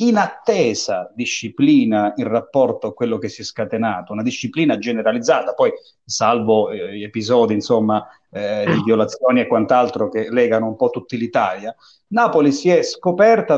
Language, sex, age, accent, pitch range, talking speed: Italian, male, 40-59, native, 125-205 Hz, 150 wpm